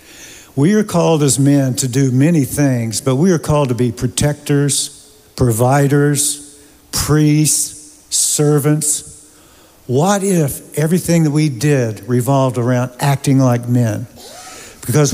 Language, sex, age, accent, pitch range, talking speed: English, male, 60-79, American, 125-155 Hz, 125 wpm